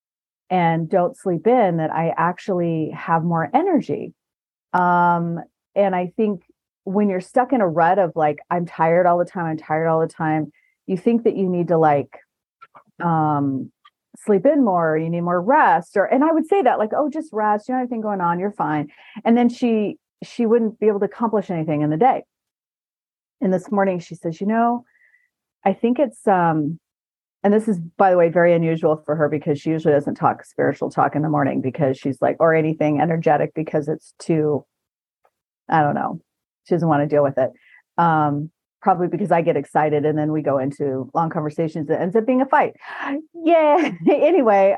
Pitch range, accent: 160-215 Hz, American